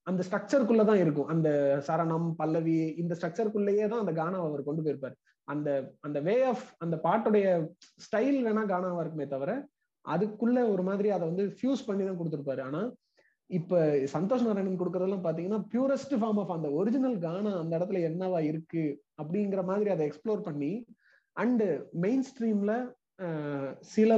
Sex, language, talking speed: male, Tamil, 150 wpm